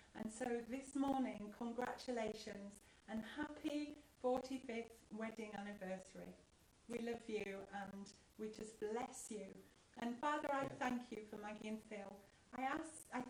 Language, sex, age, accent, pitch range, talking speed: English, female, 40-59, British, 215-270 Hz, 135 wpm